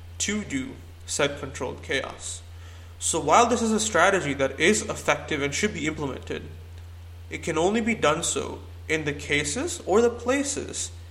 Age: 20-39